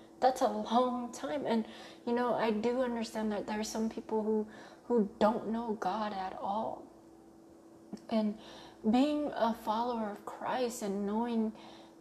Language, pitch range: English, 190-230 Hz